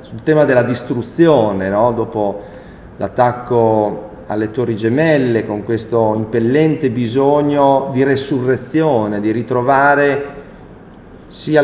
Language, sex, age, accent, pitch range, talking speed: Italian, male, 40-59, native, 115-155 Hz, 100 wpm